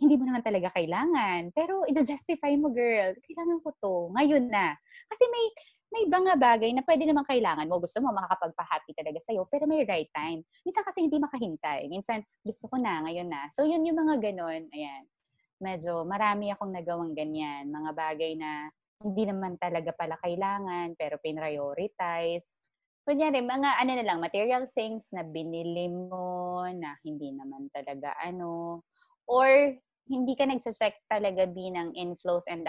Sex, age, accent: female, 20-39, Filipino